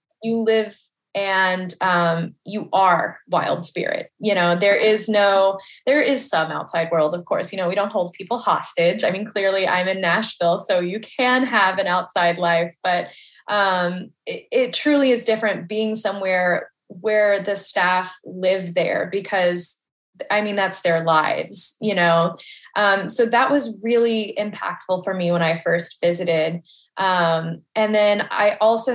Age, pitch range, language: 20-39, 185-215 Hz, English